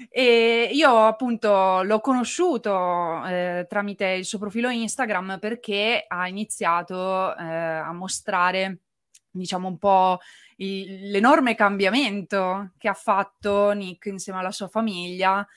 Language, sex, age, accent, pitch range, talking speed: Italian, female, 20-39, native, 180-215 Hz, 115 wpm